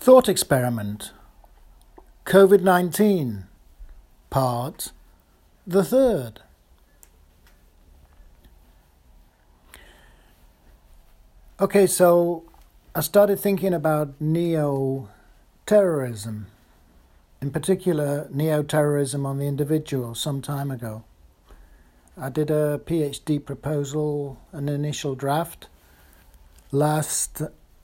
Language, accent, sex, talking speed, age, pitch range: English, British, male, 65 wpm, 60-79, 95-155 Hz